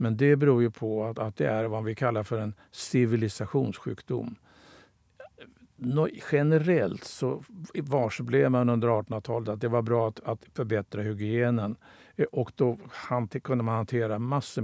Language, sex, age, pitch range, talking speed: Swedish, male, 60-79, 110-135 Hz, 145 wpm